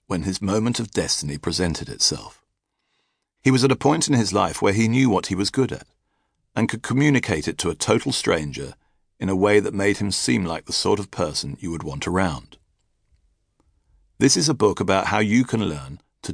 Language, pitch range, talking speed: English, 95-120 Hz, 210 wpm